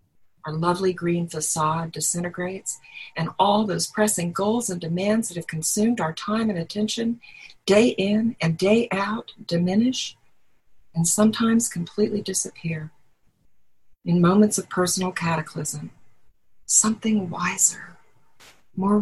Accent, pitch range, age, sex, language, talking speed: American, 165-210 Hz, 50-69, female, English, 115 wpm